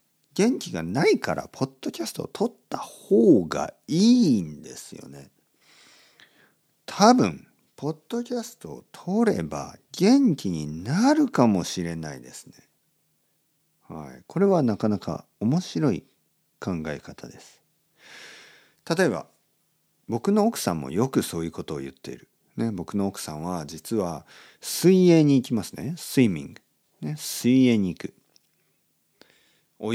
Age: 50-69